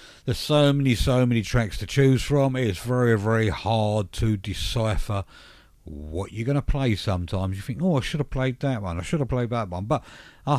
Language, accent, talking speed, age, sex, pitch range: English, British, 215 wpm, 50-69, male, 85-115 Hz